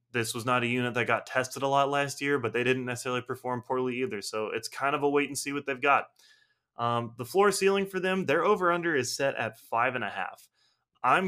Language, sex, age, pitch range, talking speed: English, male, 20-39, 115-145 Hz, 245 wpm